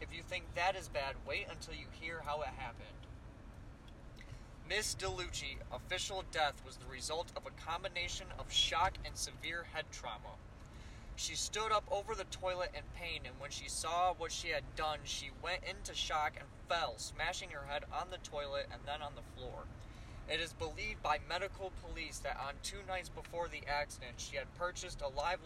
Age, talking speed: 20-39, 190 wpm